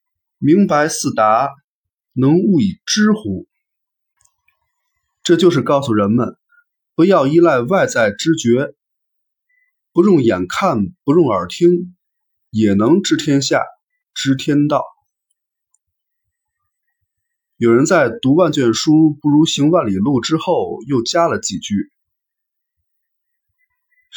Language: Chinese